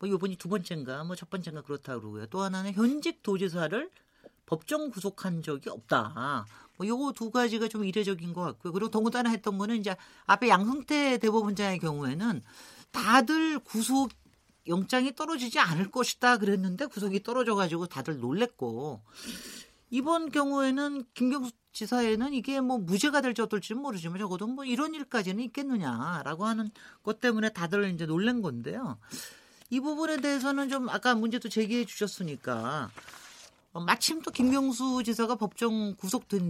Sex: male